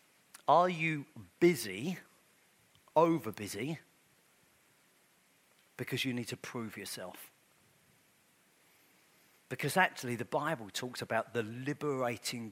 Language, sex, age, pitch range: English, male, 40-59, 120-155 Hz